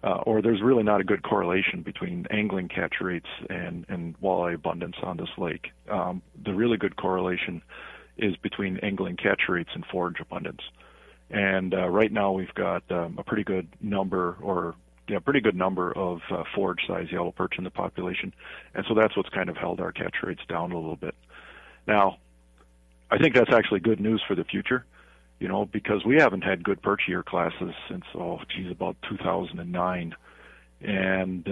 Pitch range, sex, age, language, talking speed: 85-105 Hz, male, 40-59, English, 190 wpm